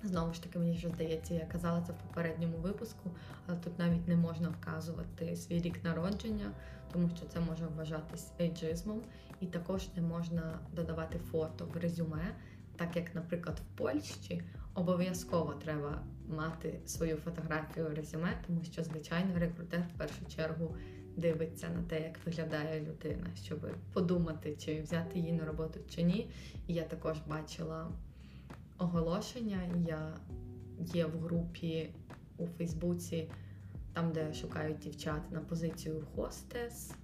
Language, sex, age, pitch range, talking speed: Ukrainian, female, 20-39, 160-170 Hz, 140 wpm